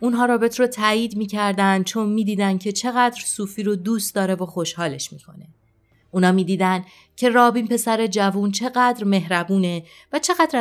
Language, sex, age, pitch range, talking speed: Persian, female, 30-49, 160-225 Hz, 145 wpm